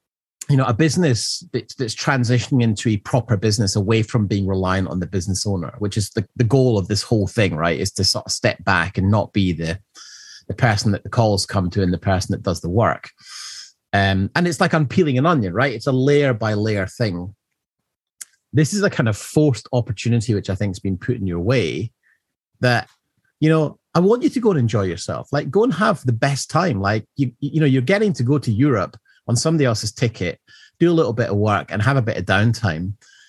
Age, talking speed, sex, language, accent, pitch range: 30-49, 225 wpm, male, English, British, 100-135 Hz